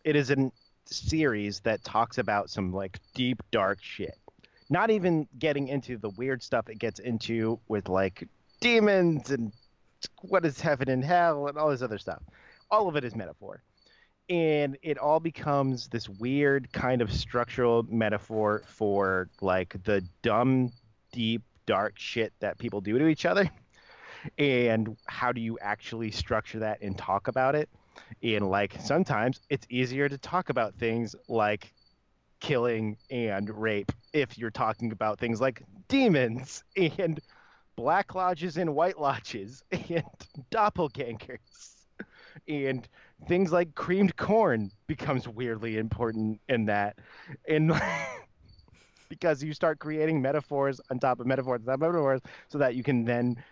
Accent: American